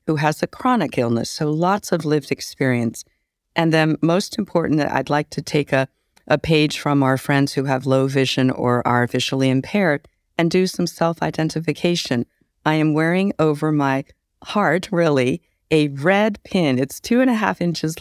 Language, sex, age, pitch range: English, female, 50-69, 125-155 Hz